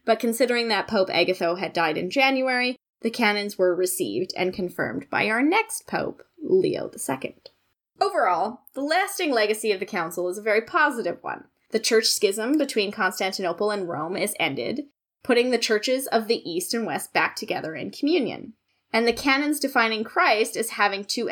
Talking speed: 175 wpm